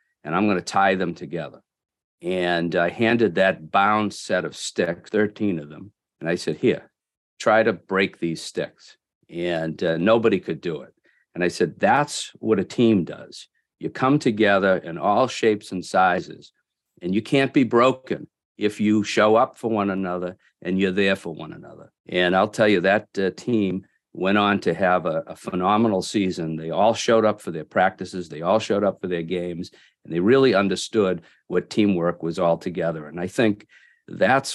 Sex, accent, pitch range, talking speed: male, American, 85-105 Hz, 190 wpm